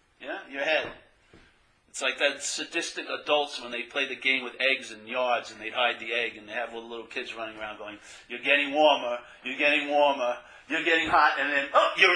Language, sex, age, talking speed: English, male, 50-69, 210 wpm